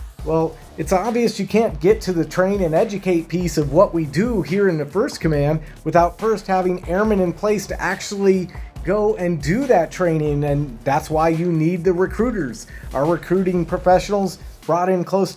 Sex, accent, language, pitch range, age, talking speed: male, American, English, 155-195 Hz, 30-49, 185 wpm